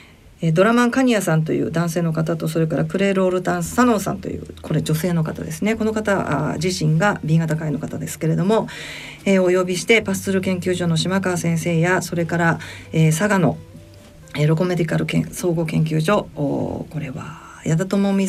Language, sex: Japanese, female